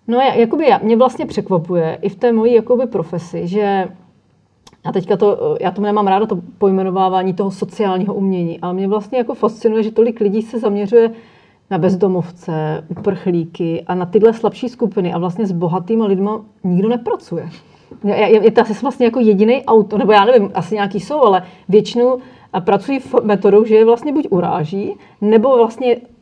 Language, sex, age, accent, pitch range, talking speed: Czech, female, 40-59, native, 190-230 Hz, 170 wpm